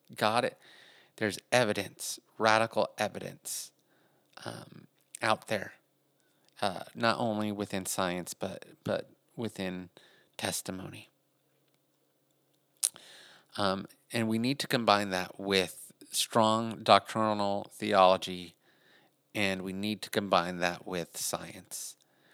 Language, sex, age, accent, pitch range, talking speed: English, male, 30-49, American, 95-115 Hz, 100 wpm